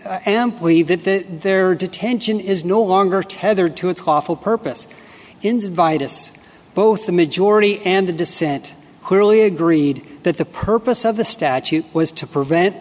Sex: male